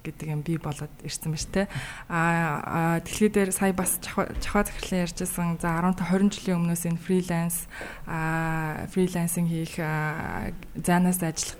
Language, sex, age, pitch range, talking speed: English, female, 20-39, 160-185 Hz, 125 wpm